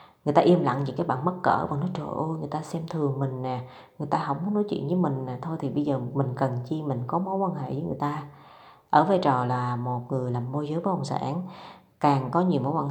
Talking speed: 280 wpm